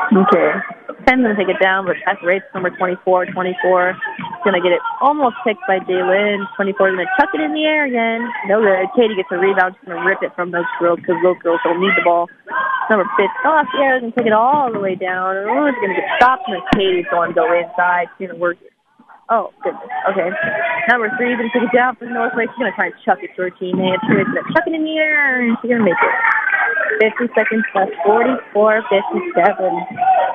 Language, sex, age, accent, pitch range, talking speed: English, female, 20-39, American, 195-305 Hz, 225 wpm